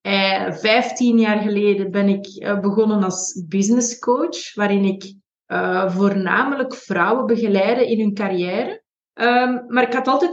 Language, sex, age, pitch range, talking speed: Dutch, female, 30-49, 205-240 Hz, 120 wpm